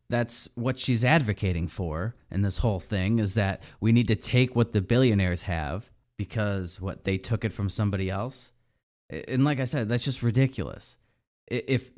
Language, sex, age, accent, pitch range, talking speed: English, male, 30-49, American, 100-125 Hz, 175 wpm